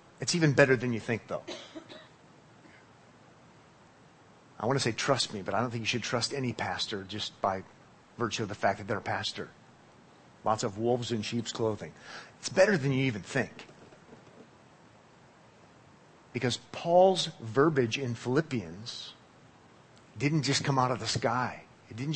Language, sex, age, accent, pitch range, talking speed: English, male, 40-59, American, 120-150 Hz, 155 wpm